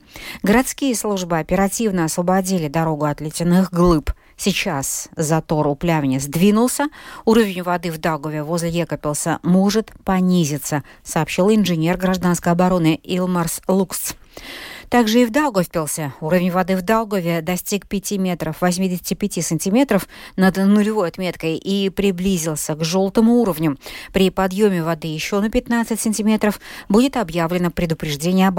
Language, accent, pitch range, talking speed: Russian, native, 160-200 Hz, 125 wpm